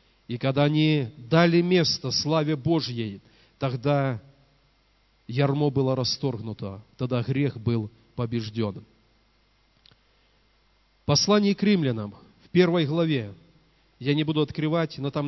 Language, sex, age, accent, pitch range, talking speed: Russian, male, 40-59, native, 125-165 Hz, 105 wpm